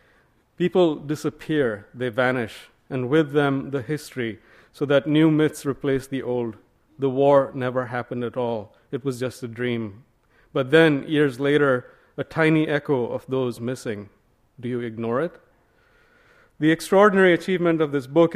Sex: male